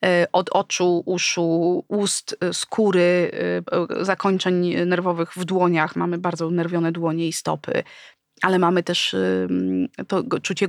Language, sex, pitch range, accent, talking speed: Polish, female, 175-205 Hz, native, 110 wpm